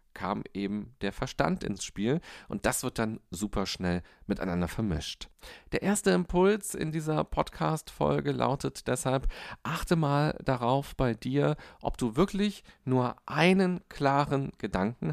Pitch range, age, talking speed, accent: 115-155 Hz, 40-59, 135 wpm, German